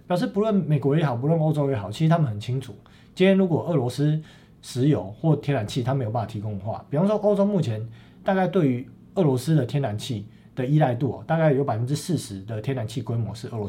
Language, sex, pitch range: Chinese, male, 115-165 Hz